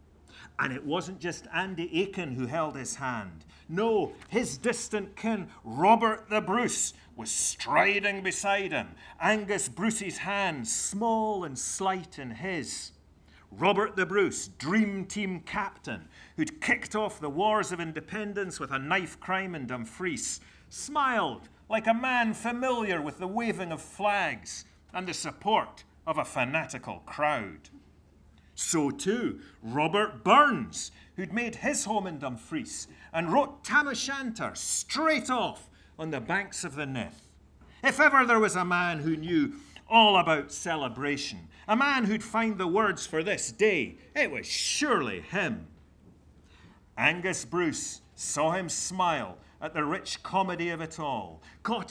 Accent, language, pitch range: British, English, 130-215 Hz